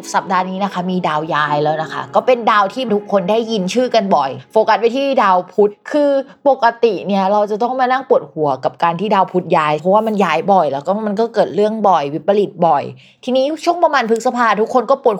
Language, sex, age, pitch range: Thai, female, 20-39, 185-245 Hz